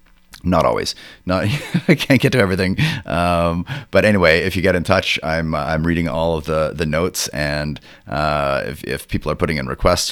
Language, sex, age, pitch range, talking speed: English, male, 30-49, 80-95 Hz, 195 wpm